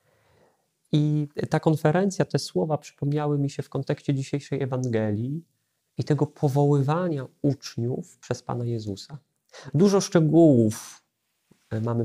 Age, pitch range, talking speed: 40-59, 120-150 Hz, 110 wpm